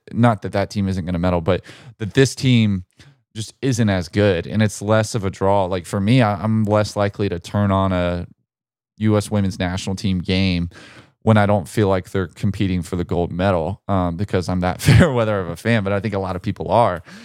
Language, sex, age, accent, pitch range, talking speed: English, male, 20-39, American, 95-110 Hz, 225 wpm